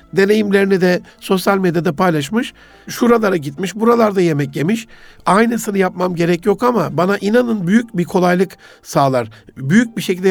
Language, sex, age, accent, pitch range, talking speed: Turkish, male, 60-79, native, 165-205 Hz, 140 wpm